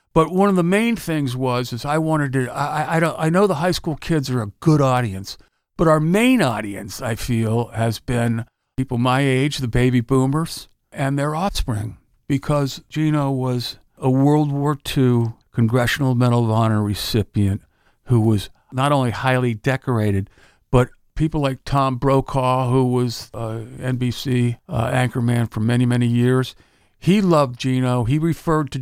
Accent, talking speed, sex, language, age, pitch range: American, 165 wpm, male, English, 50-69, 120-150 Hz